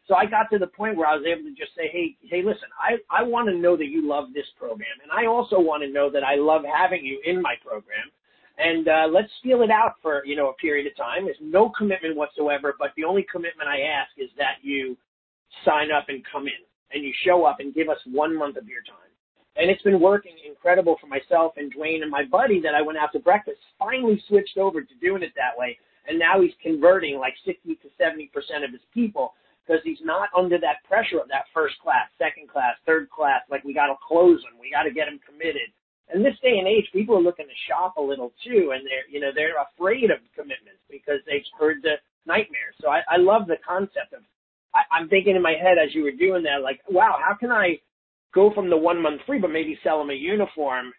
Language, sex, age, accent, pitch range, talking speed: English, male, 40-59, American, 145-205 Hz, 245 wpm